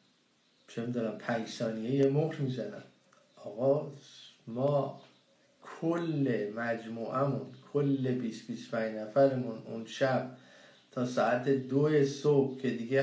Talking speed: 100 wpm